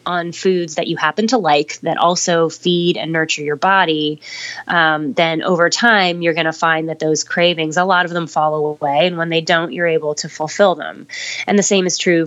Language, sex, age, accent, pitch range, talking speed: English, female, 20-39, American, 155-175 Hz, 220 wpm